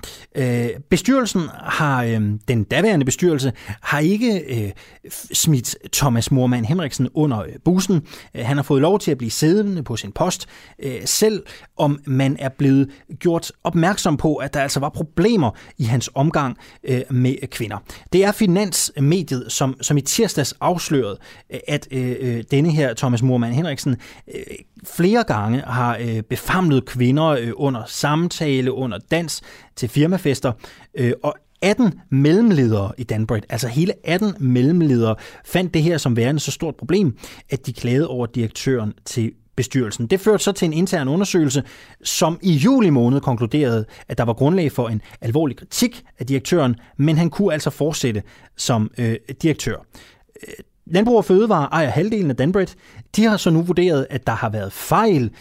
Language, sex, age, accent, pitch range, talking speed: Danish, male, 30-49, native, 125-170 Hz, 145 wpm